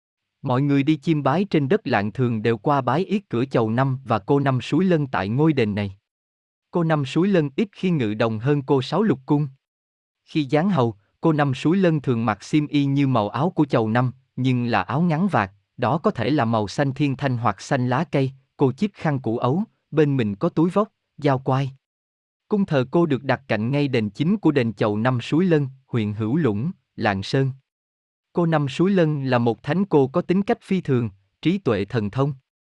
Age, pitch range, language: 20-39, 115-155 Hz, Vietnamese